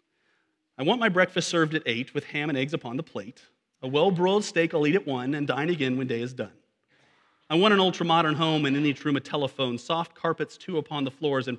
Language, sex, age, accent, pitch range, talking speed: English, male, 40-59, American, 125-165 Hz, 240 wpm